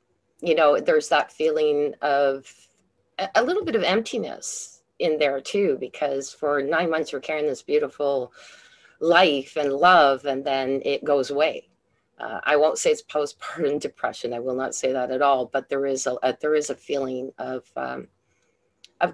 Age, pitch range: 40-59, 135-185 Hz